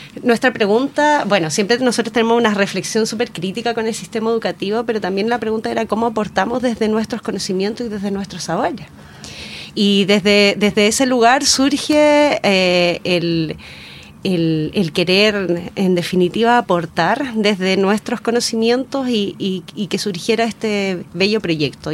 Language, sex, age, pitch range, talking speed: Spanish, female, 30-49, 185-230 Hz, 145 wpm